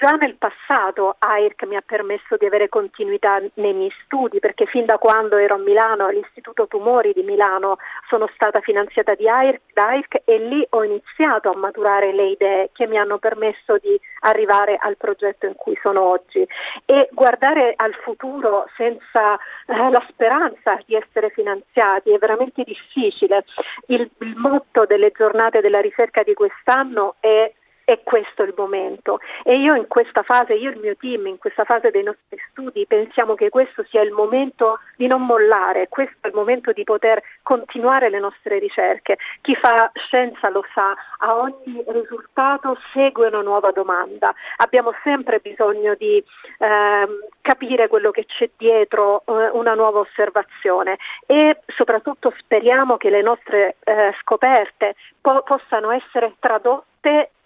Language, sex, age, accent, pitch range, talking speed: Italian, female, 40-59, native, 210-265 Hz, 155 wpm